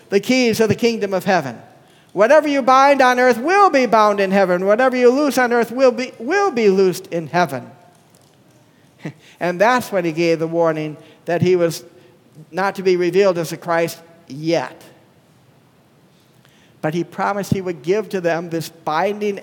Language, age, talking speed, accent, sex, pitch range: English, 50-69, 175 wpm, American, male, 175-275 Hz